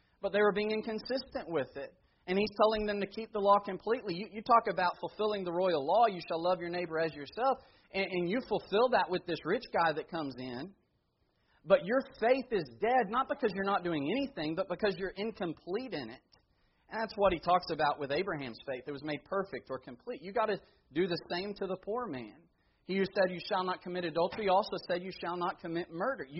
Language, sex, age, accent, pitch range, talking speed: English, male, 40-59, American, 150-205 Hz, 225 wpm